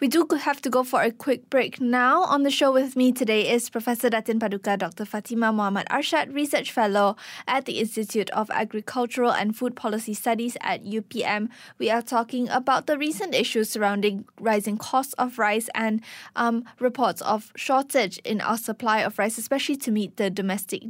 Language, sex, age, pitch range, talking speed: English, female, 10-29, 215-255 Hz, 185 wpm